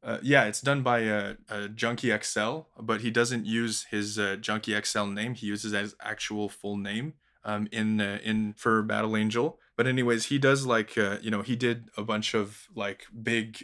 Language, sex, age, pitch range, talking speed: English, male, 20-39, 105-120 Hz, 200 wpm